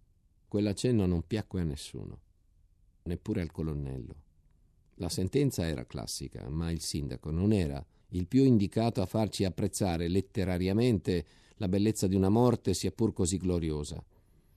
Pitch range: 85-110 Hz